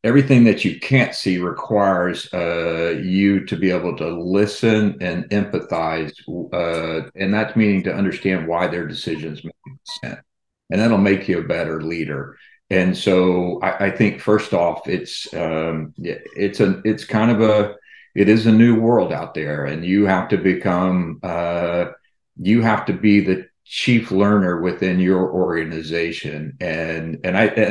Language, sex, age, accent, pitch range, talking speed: English, male, 50-69, American, 90-105 Hz, 160 wpm